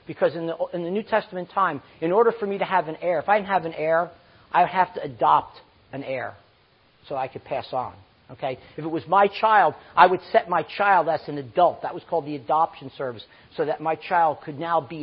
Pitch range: 165-225 Hz